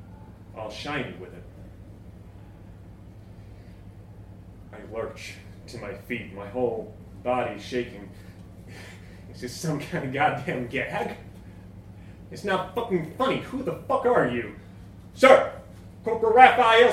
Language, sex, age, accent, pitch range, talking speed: English, male, 30-49, American, 95-140 Hz, 115 wpm